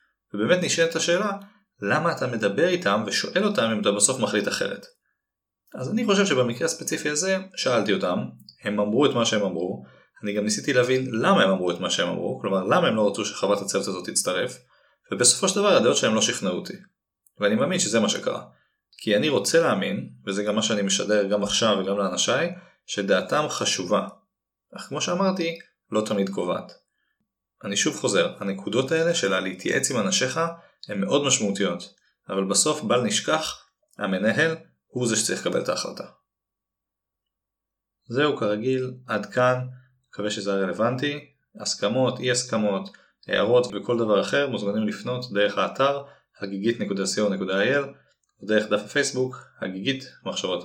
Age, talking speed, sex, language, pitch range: 30-49, 155 wpm, male, Hebrew, 100-150 Hz